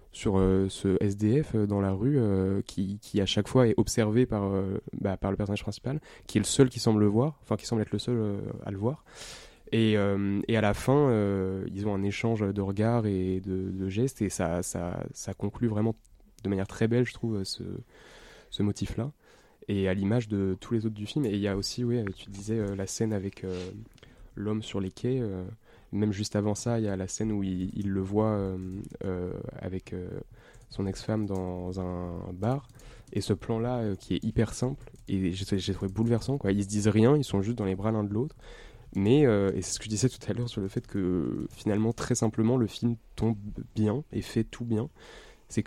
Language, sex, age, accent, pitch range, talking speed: French, male, 20-39, French, 95-115 Hz, 235 wpm